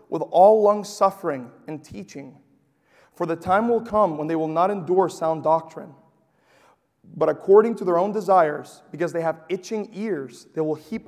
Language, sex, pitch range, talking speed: English, male, 150-205 Hz, 175 wpm